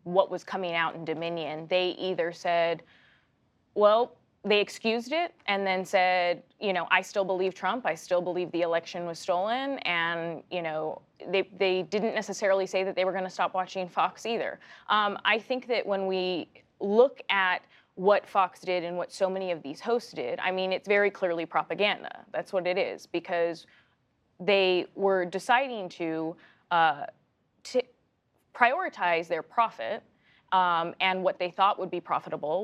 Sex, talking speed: female, 170 wpm